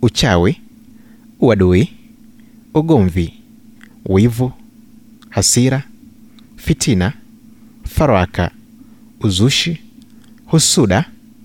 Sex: male